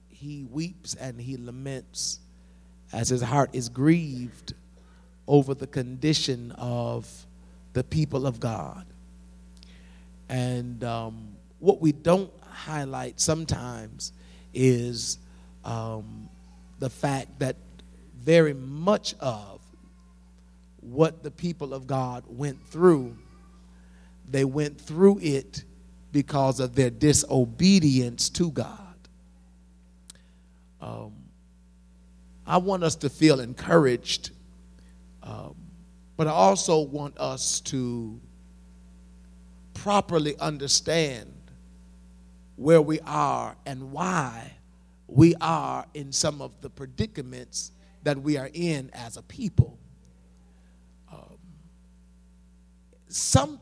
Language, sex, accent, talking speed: English, male, American, 95 wpm